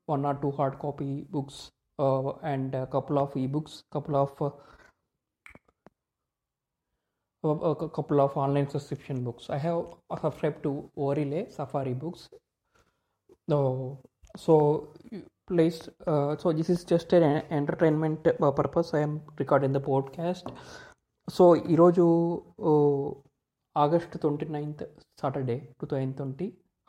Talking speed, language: 120 wpm, Telugu